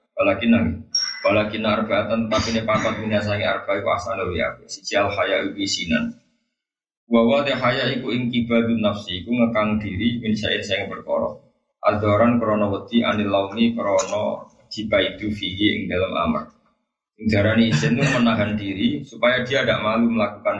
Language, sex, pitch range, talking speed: Malay, male, 100-120 Hz, 135 wpm